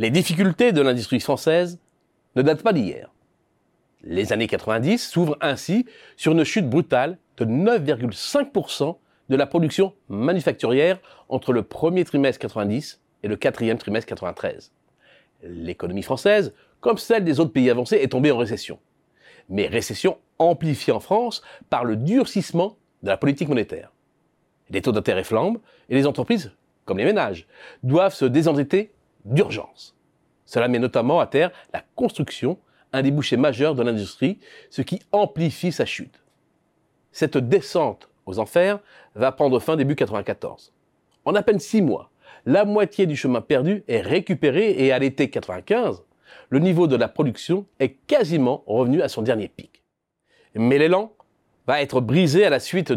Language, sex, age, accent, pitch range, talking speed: French, male, 40-59, French, 130-195 Hz, 150 wpm